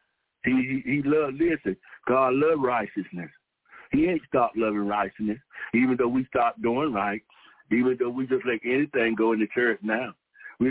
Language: English